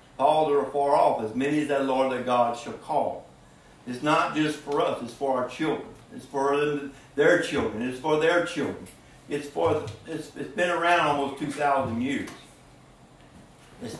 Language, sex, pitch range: English, male, 115-145 Hz